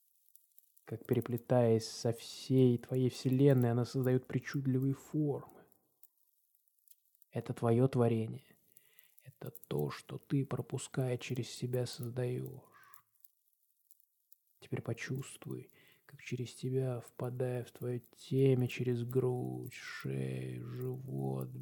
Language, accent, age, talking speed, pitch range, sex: Russian, native, 20-39, 95 wpm, 115-130 Hz, male